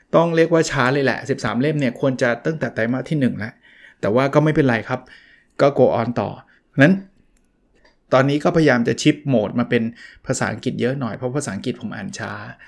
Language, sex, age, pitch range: Thai, male, 20-39, 120-160 Hz